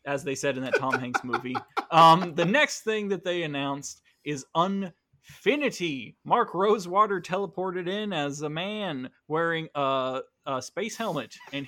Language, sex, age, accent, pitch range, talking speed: English, male, 20-39, American, 140-185 Hz, 155 wpm